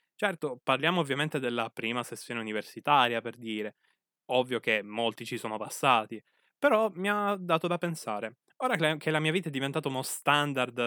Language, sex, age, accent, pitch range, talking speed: Italian, male, 20-39, native, 120-190 Hz, 165 wpm